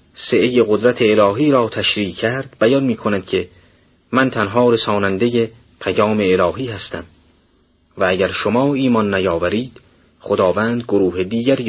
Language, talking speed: Persian, 120 wpm